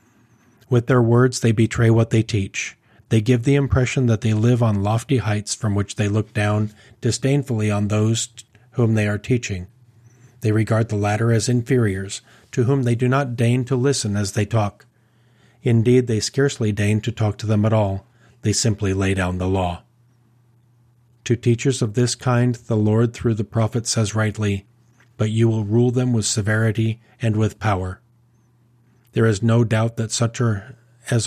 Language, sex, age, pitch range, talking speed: English, male, 40-59, 105-120 Hz, 175 wpm